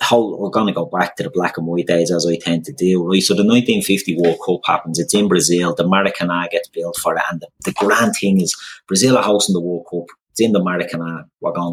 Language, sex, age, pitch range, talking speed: English, male, 30-49, 85-105 Hz, 270 wpm